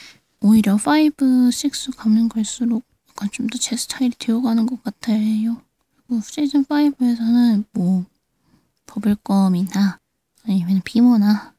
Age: 20-39